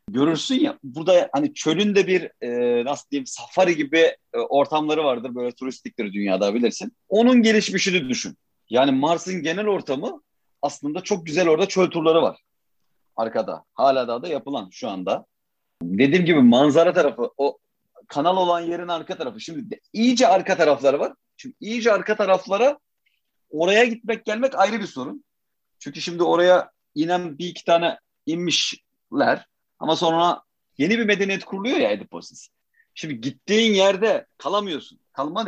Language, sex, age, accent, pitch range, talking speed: Turkish, male, 40-59, native, 155-215 Hz, 145 wpm